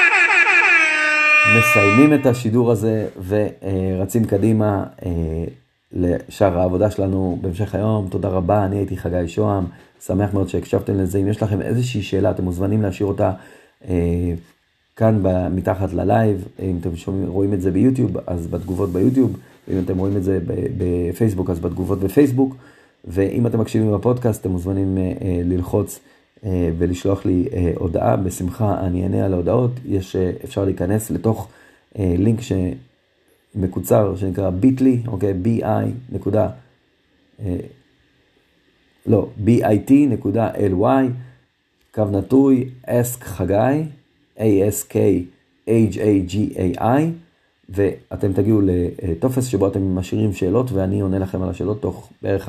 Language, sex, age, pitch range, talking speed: Hebrew, male, 40-59, 95-115 Hz, 115 wpm